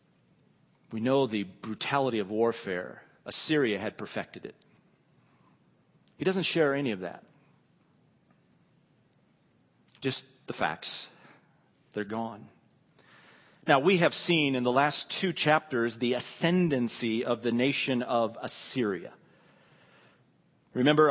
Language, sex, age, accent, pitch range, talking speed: English, male, 40-59, American, 120-150 Hz, 110 wpm